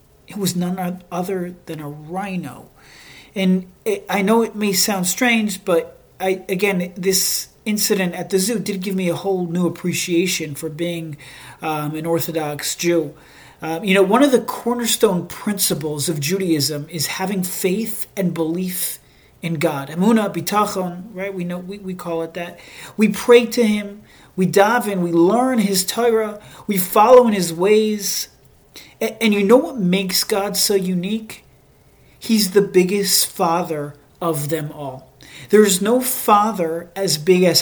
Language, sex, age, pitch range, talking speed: English, male, 40-59, 165-205 Hz, 160 wpm